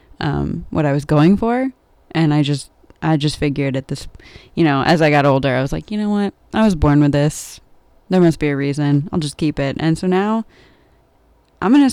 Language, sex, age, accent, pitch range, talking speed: English, female, 20-39, American, 150-190 Hz, 230 wpm